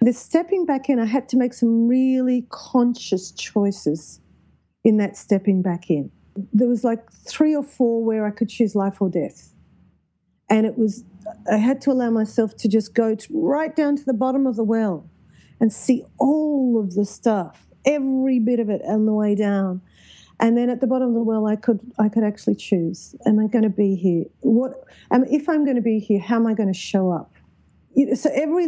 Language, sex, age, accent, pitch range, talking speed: English, female, 40-59, Australian, 200-245 Hz, 215 wpm